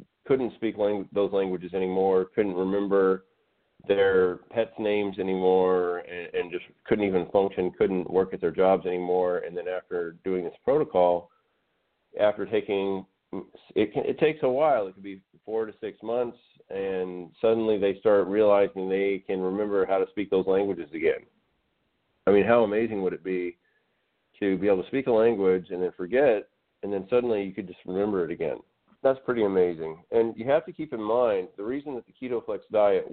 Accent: American